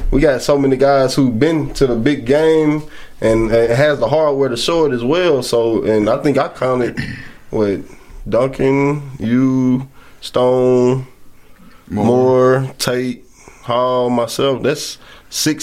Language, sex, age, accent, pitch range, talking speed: English, male, 20-39, American, 120-145 Hz, 140 wpm